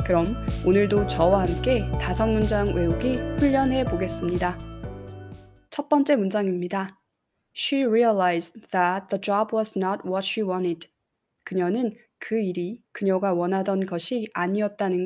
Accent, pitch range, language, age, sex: native, 175-215 Hz, Korean, 20-39, female